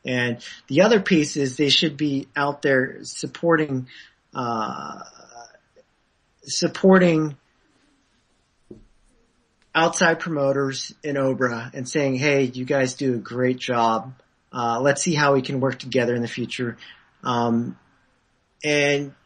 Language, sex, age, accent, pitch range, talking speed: English, male, 40-59, American, 125-155 Hz, 120 wpm